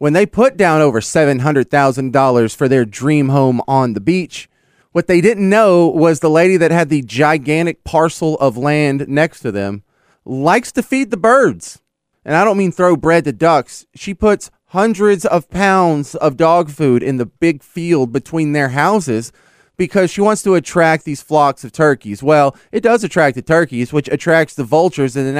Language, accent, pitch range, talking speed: English, American, 140-180 Hz, 185 wpm